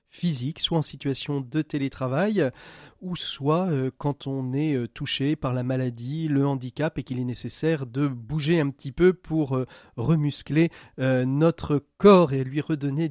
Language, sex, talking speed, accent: French, male, 150 wpm, French